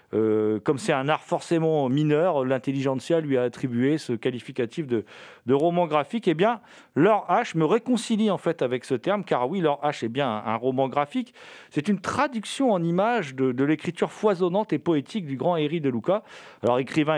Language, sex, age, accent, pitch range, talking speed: French, male, 40-59, French, 135-195 Hz, 190 wpm